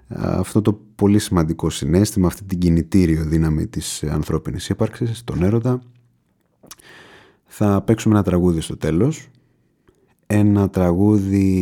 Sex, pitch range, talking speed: male, 90-125 Hz, 115 wpm